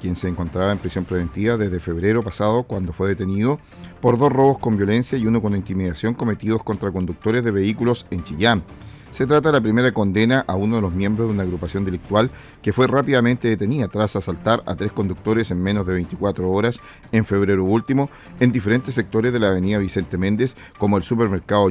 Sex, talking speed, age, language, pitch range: male, 195 wpm, 40-59, Portuguese, 95-120 Hz